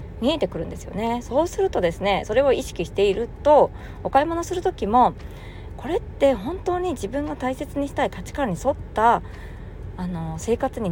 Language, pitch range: Japanese, 165-275 Hz